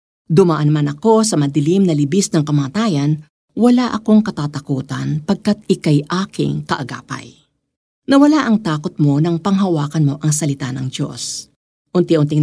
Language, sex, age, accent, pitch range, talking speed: Filipino, female, 50-69, native, 145-210 Hz, 135 wpm